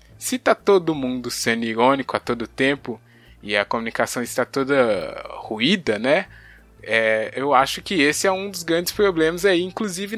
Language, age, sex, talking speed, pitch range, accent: Portuguese, 20-39, male, 160 wpm, 120-195 Hz, Brazilian